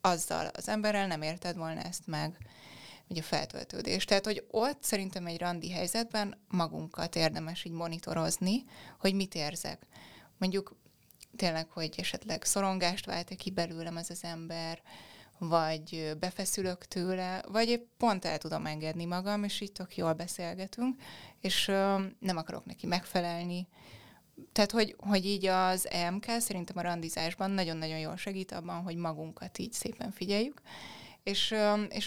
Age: 20-39